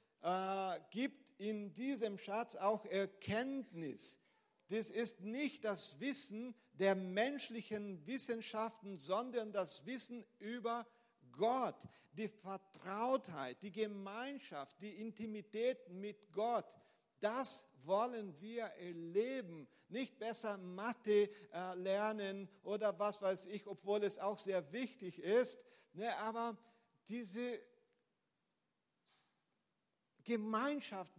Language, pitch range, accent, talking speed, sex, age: German, 195-235 Hz, German, 100 wpm, male, 50-69